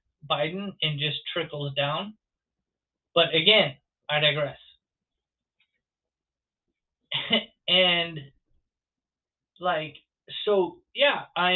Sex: male